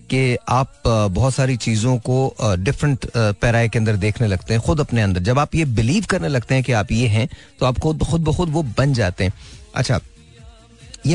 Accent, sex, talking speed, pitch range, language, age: native, male, 205 wpm, 115-155 Hz, Hindi, 30-49